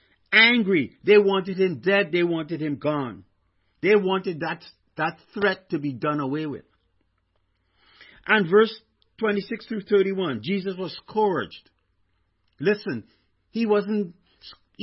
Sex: male